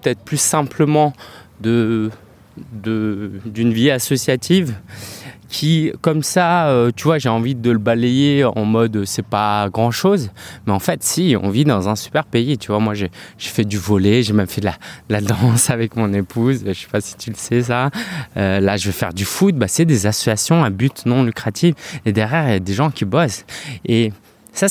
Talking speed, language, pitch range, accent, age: 210 wpm, French, 110-155 Hz, French, 20-39